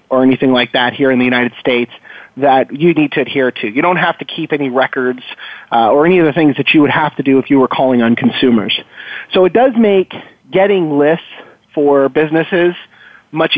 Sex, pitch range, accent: male, 130-160 Hz, American